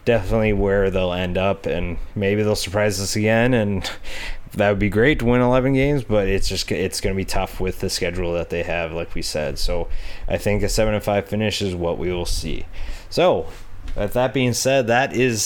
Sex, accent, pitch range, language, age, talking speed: male, American, 95-120 Hz, English, 20-39, 220 wpm